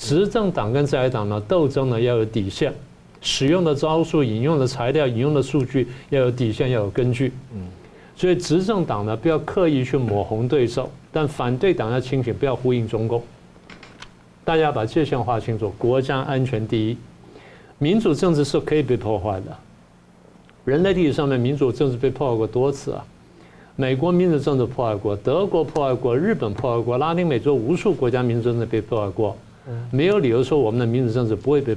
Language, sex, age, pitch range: Chinese, male, 50-69, 110-145 Hz